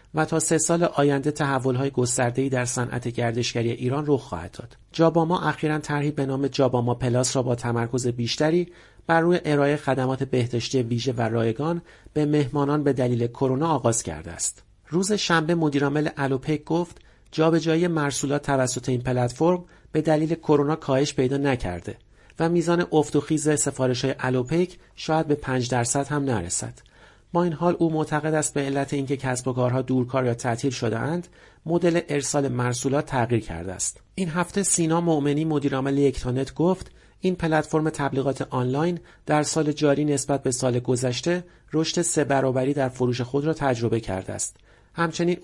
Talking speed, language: 160 wpm, Persian